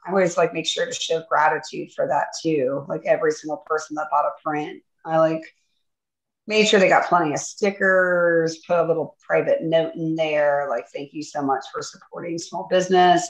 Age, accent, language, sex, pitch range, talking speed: 30-49, American, English, female, 165-215 Hz, 200 wpm